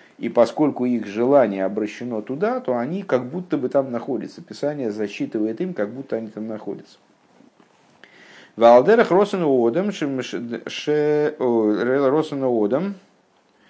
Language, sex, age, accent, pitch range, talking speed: Russian, male, 50-69, native, 105-150 Hz, 105 wpm